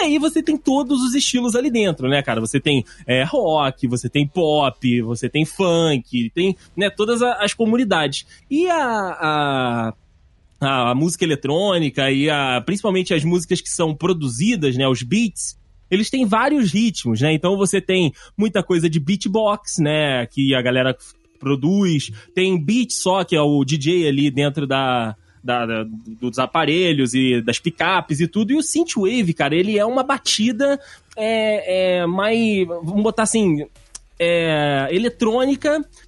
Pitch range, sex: 145-220 Hz, male